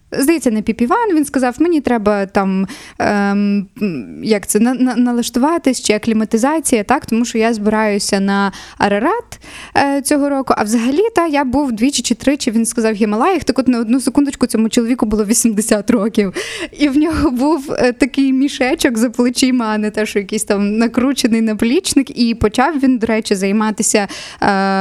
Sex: female